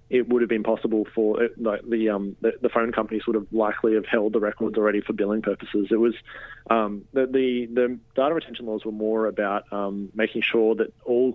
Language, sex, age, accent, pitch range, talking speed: English, male, 20-39, Australian, 110-120 Hz, 220 wpm